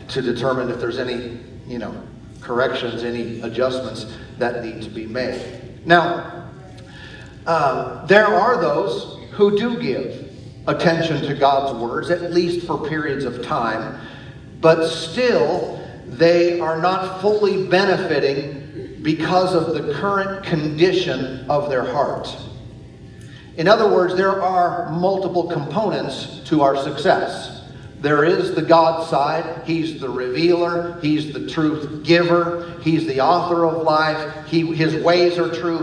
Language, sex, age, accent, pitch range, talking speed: English, male, 50-69, American, 135-175 Hz, 130 wpm